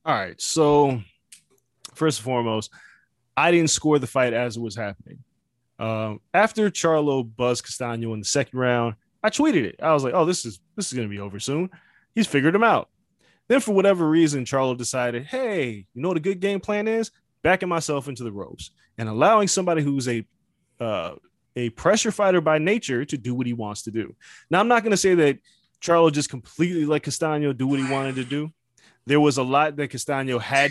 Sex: male